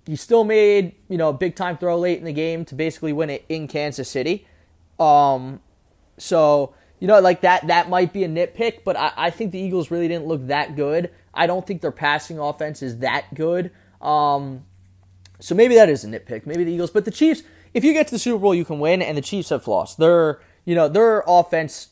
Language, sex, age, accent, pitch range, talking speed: English, male, 20-39, American, 125-175 Hz, 230 wpm